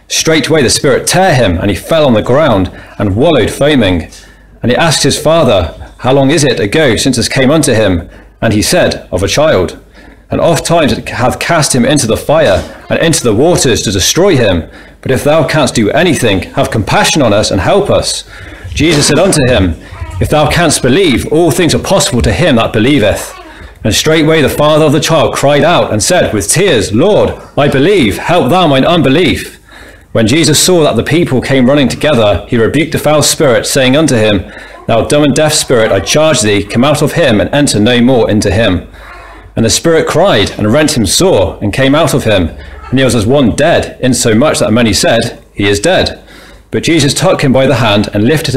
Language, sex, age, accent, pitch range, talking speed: English, male, 30-49, British, 105-150 Hz, 210 wpm